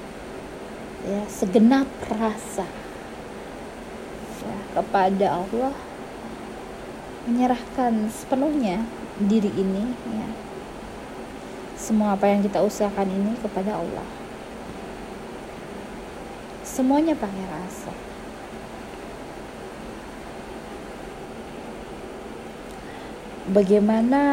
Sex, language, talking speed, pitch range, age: female, Indonesian, 55 wpm, 200-250 Hz, 20-39